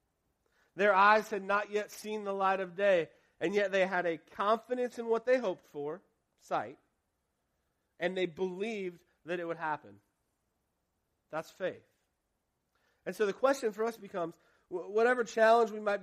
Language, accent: English, American